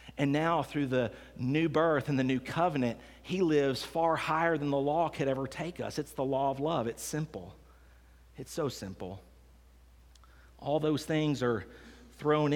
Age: 40-59